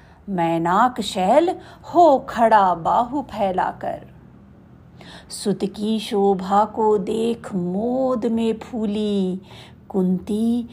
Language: Hindi